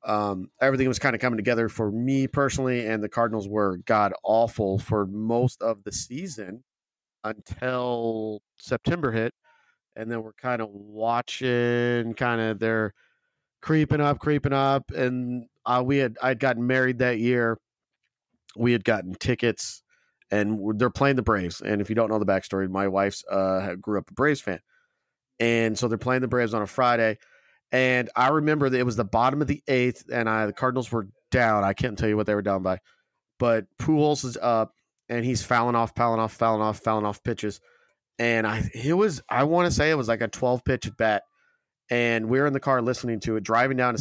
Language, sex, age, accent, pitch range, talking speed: English, male, 40-59, American, 110-130 Hz, 200 wpm